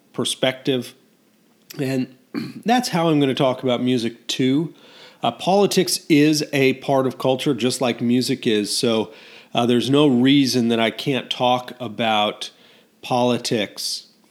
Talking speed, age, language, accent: 140 wpm, 40-59, English, American